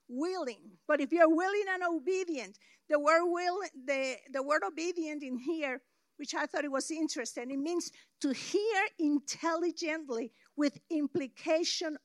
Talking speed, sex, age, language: 145 wpm, female, 50-69, English